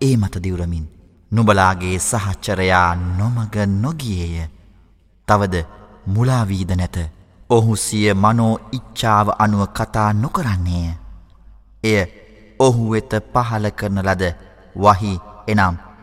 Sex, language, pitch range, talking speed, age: male, Arabic, 90-110 Hz, 95 wpm, 30-49